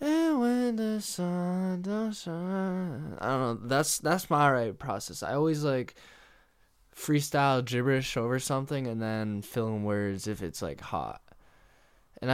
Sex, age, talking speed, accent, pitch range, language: male, 10-29, 145 wpm, American, 105-140 Hz, English